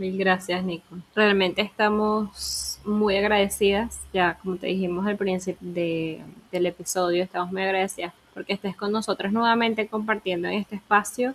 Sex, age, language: female, 10-29, Spanish